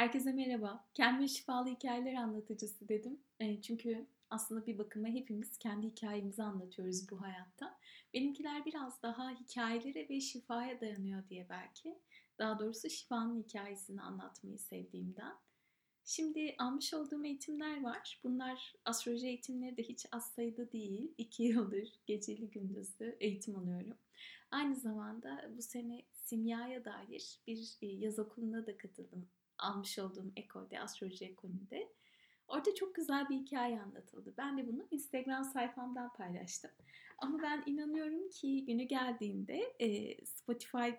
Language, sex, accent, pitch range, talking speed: Turkish, female, native, 205-250 Hz, 125 wpm